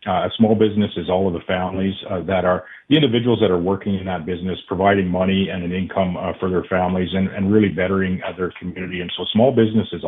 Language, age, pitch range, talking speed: English, 50-69, 95-115 Hz, 245 wpm